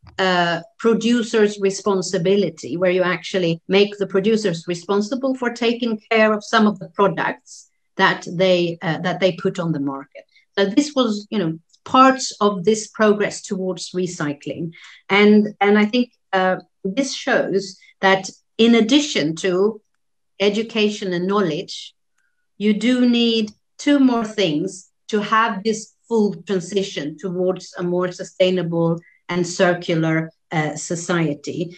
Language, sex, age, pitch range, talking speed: Romanian, female, 50-69, 175-215 Hz, 135 wpm